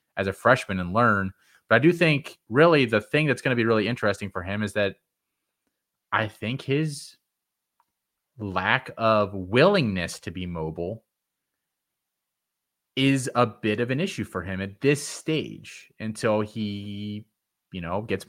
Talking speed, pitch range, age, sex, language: 155 wpm, 95-145 Hz, 30-49, male, English